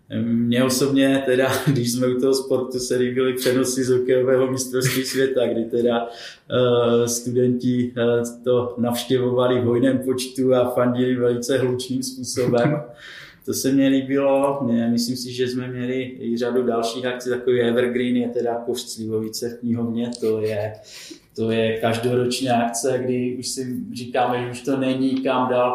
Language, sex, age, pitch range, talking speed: Czech, male, 20-39, 120-130 Hz, 150 wpm